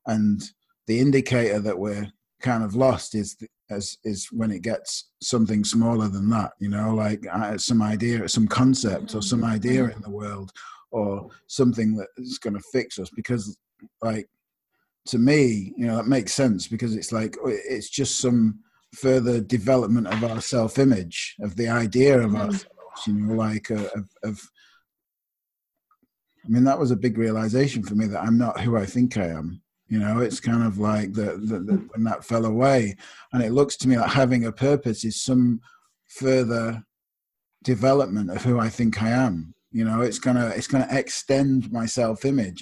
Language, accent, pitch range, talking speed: English, British, 110-125 Hz, 175 wpm